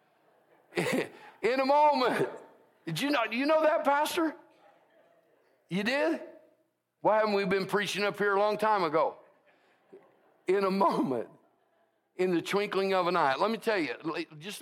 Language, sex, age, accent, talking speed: English, male, 60-79, American, 155 wpm